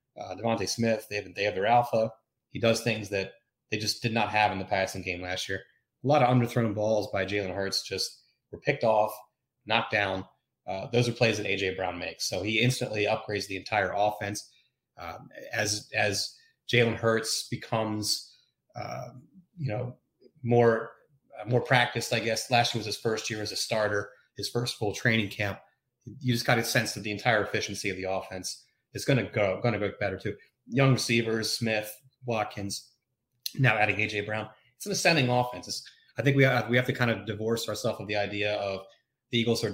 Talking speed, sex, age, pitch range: 200 wpm, male, 30-49, 100-120 Hz